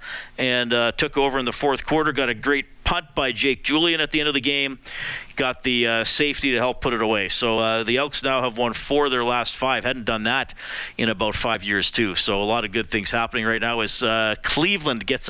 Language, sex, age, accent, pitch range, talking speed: English, male, 50-69, American, 125-160 Hz, 245 wpm